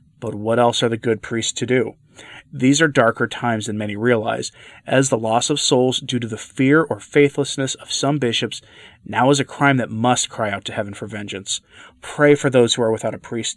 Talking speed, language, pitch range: 220 wpm, English, 110-135 Hz